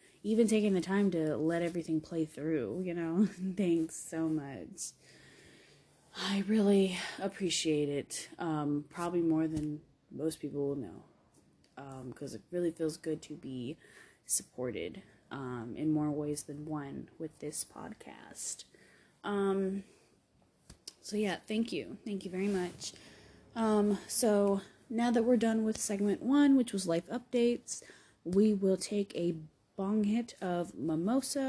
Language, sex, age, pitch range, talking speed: English, female, 20-39, 160-210 Hz, 145 wpm